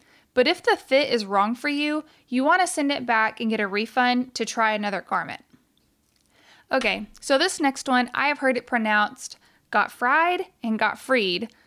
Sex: female